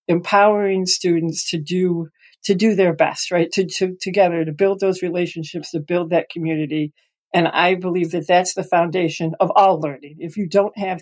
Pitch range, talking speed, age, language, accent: 170-200 Hz, 185 wpm, 50-69, English, American